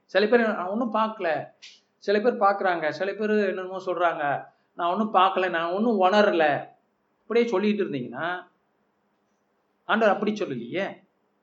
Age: 50-69